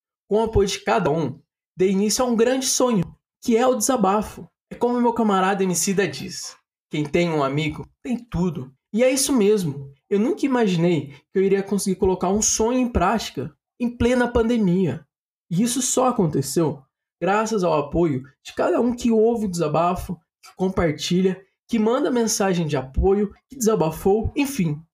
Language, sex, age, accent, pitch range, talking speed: Portuguese, male, 20-39, Brazilian, 170-245 Hz, 170 wpm